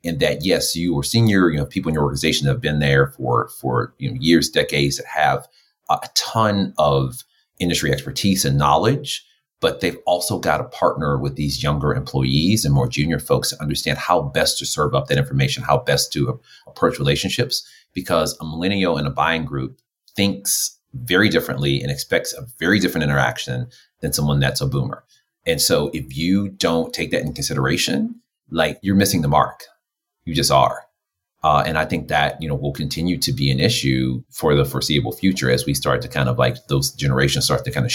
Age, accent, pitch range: 30-49, American, 70-85 Hz